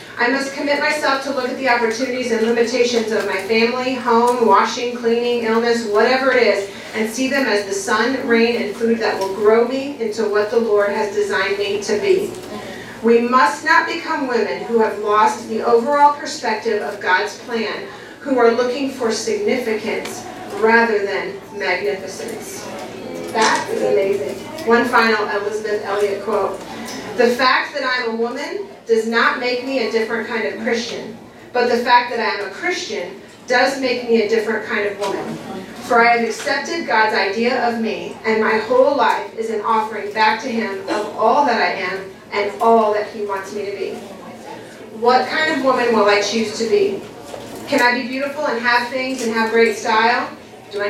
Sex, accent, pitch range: female, American, 215-250 Hz